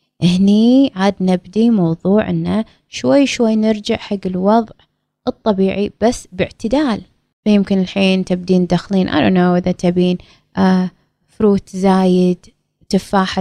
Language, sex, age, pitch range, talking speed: Arabic, female, 20-39, 180-220 Hz, 115 wpm